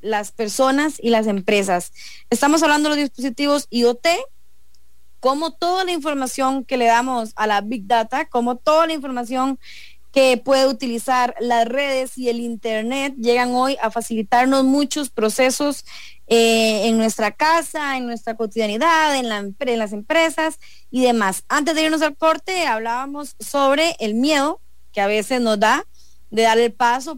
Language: English